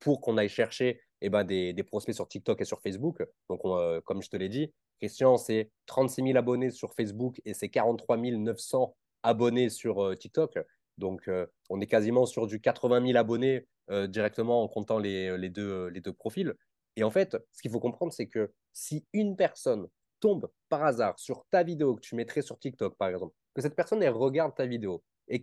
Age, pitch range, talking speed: 20-39, 110-155 Hz, 210 wpm